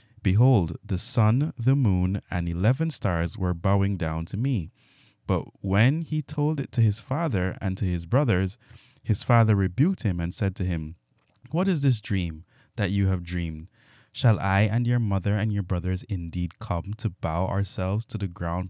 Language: English